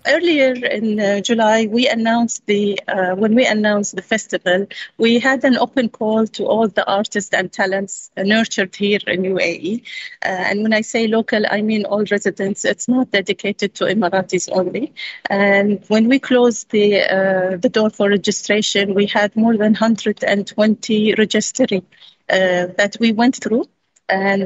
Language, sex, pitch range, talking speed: English, female, 200-230 Hz, 160 wpm